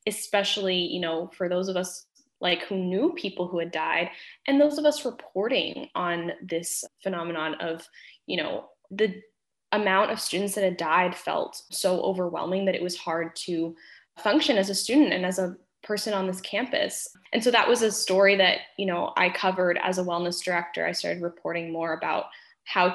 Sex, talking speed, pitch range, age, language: female, 190 wpm, 175-215 Hz, 10-29, English